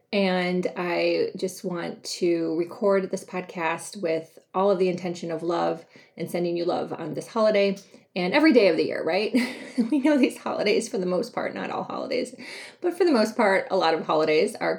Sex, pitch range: female, 185-255 Hz